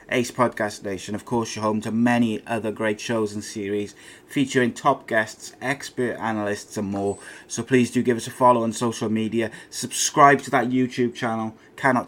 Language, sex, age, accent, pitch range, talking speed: English, male, 20-39, British, 110-125 Hz, 185 wpm